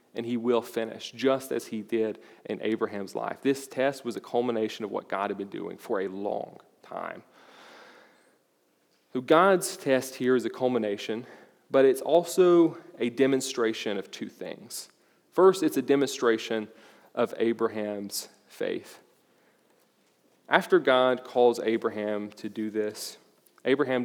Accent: American